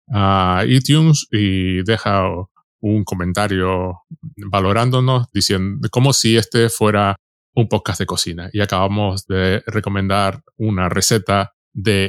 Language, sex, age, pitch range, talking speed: Spanish, male, 20-39, 95-130 Hz, 115 wpm